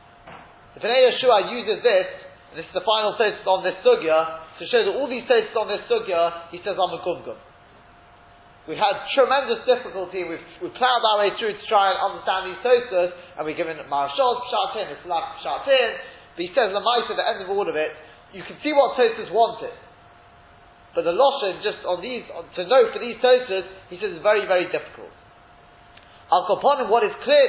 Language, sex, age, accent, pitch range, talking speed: English, male, 20-39, British, 175-240 Hz, 200 wpm